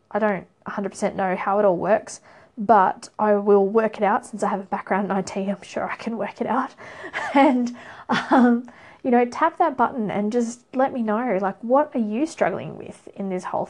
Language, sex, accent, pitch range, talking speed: English, female, Australian, 205-245 Hz, 215 wpm